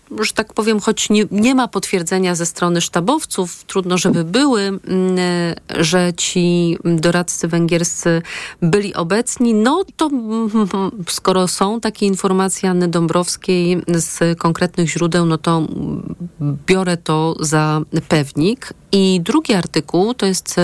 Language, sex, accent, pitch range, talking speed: Polish, female, native, 165-200 Hz, 120 wpm